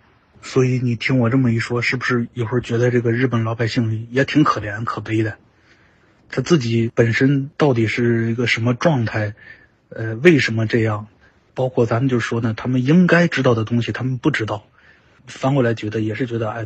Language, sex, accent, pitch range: Chinese, male, native, 110-135 Hz